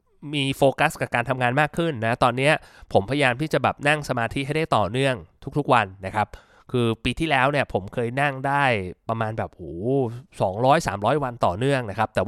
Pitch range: 115-145 Hz